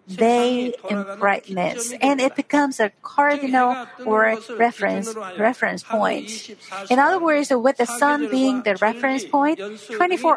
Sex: female